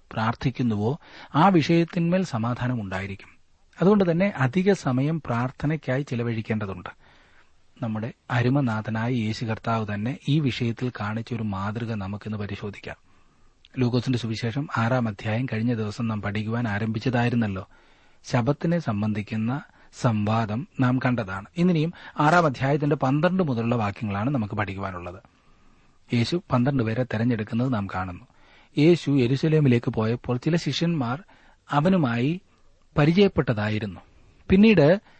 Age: 30-49